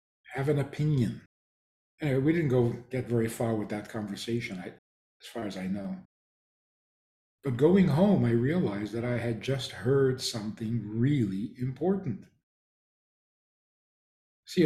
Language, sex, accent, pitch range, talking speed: English, male, American, 115-160 Hz, 140 wpm